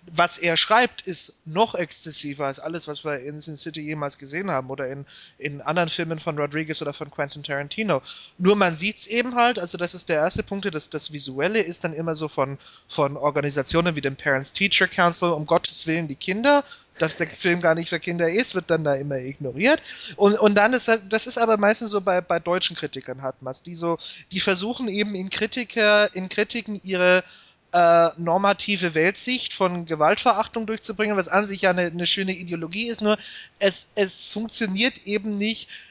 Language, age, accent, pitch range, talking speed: German, 30-49, German, 160-205 Hz, 195 wpm